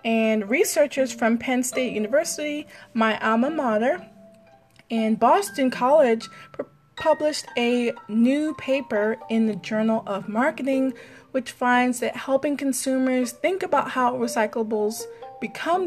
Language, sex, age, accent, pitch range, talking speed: English, female, 20-39, American, 215-265 Hz, 120 wpm